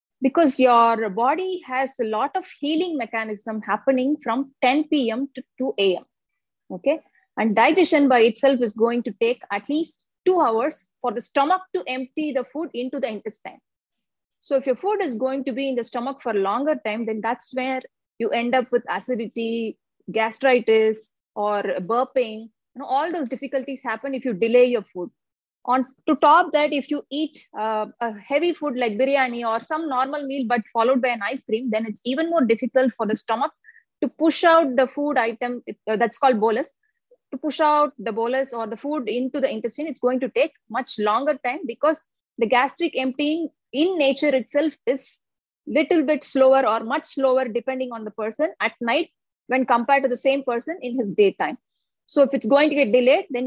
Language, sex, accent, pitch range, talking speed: English, female, Indian, 230-295 Hz, 190 wpm